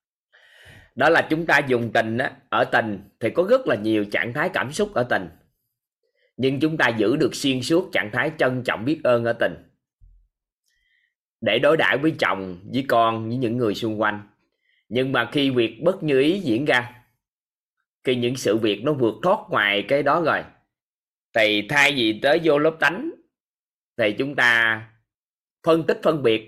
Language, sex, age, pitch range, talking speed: Vietnamese, male, 20-39, 115-155 Hz, 185 wpm